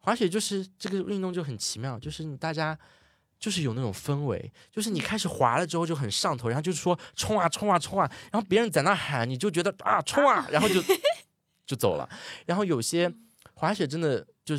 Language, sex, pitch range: Chinese, male, 115-165 Hz